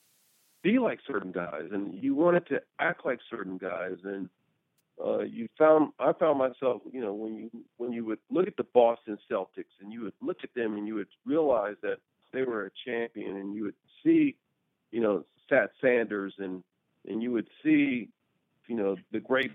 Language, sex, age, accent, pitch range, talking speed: English, male, 50-69, American, 110-175 Hz, 195 wpm